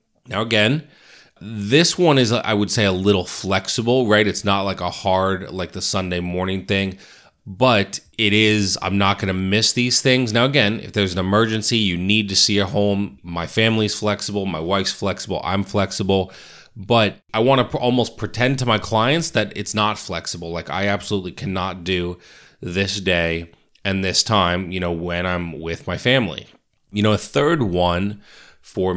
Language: English